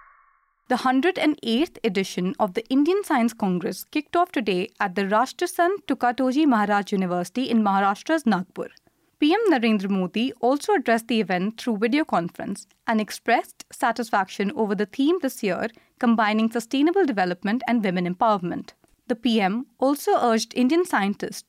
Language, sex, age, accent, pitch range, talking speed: English, female, 30-49, Indian, 205-270 Hz, 140 wpm